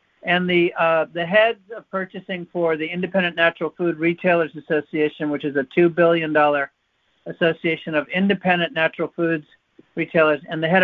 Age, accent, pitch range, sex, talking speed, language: 50-69, American, 155-180 Hz, male, 155 wpm, English